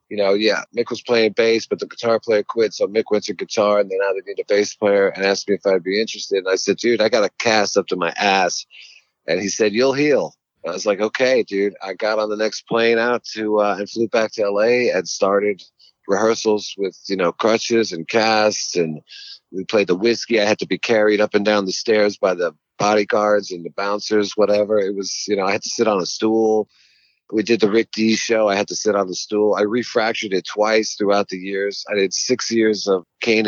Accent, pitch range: American, 100-120 Hz